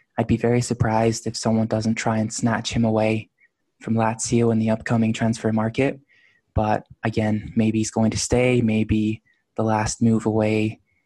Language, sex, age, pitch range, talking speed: English, male, 20-39, 105-115 Hz, 170 wpm